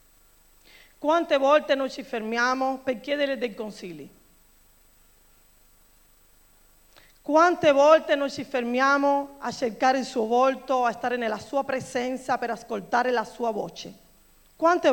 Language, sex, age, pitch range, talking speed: Italian, female, 40-59, 235-290 Hz, 120 wpm